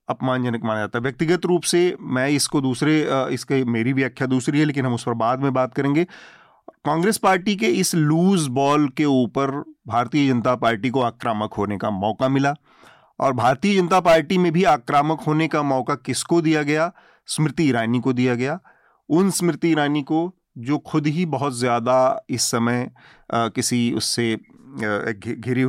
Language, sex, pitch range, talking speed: Hindi, male, 120-150 Hz, 170 wpm